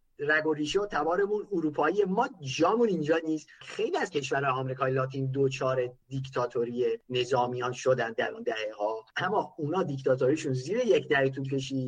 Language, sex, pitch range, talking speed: Persian, male, 135-190 Hz, 160 wpm